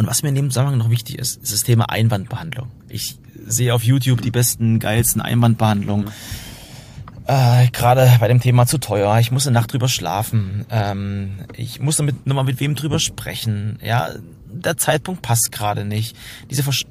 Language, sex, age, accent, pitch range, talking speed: German, male, 30-49, German, 115-135 Hz, 180 wpm